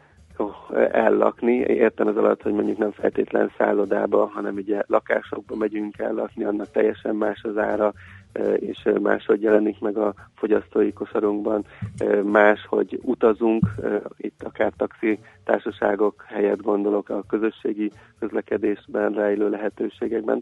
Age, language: 40-59, Hungarian